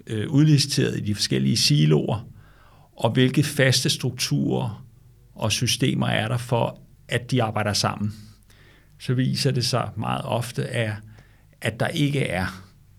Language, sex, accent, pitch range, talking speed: Danish, male, native, 105-130 Hz, 135 wpm